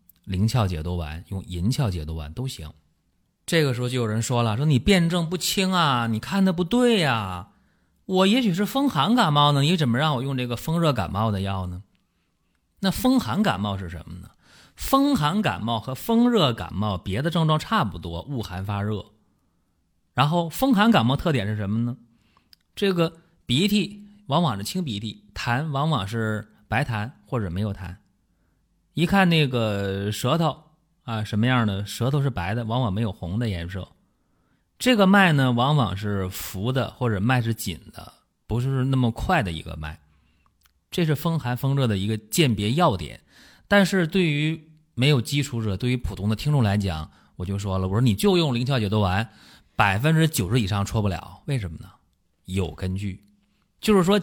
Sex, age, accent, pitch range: male, 30-49, native, 100-155 Hz